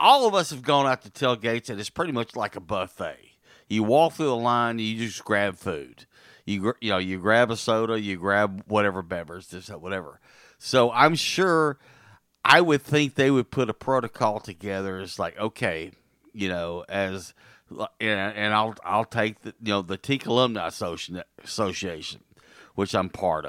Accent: American